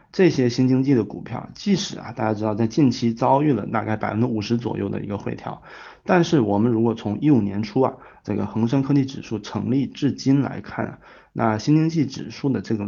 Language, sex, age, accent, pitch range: Chinese, male, 20-39, native, 110-135 Hz